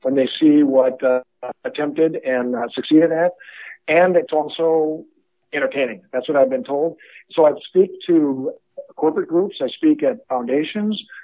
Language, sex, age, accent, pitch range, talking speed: English, male, 50-69, American, 130-170 Hz, 155 wpm